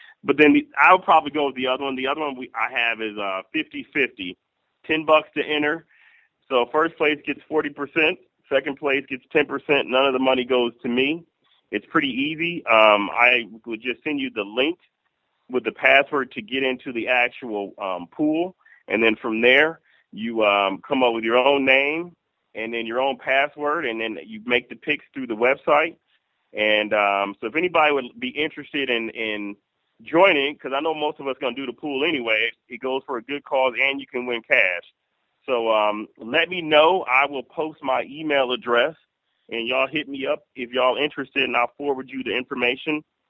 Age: 30-49